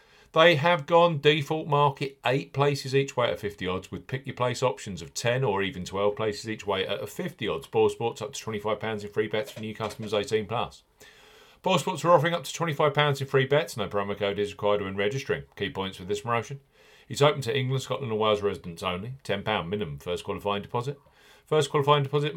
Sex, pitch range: male, 100-135 Hz